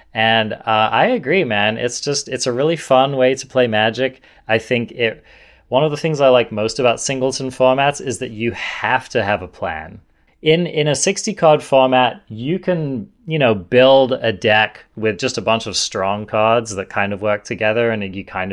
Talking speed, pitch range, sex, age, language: 205 wpm, 100-130 Hz, male, 30-49, English